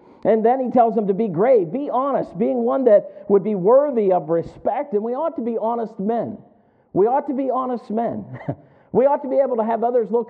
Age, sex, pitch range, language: 50-69, male, 195-250 Hz, English